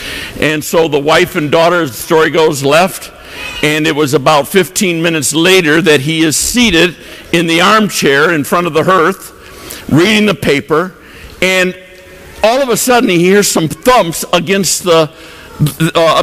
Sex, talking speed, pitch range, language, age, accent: male, 165 wpm, 165-205 Hz, English, 60-79, American